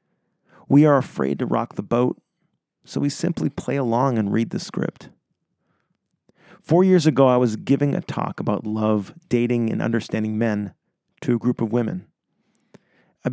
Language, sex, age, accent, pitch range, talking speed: English, male, 40-59, American, 120-155 Hz, 160 wpm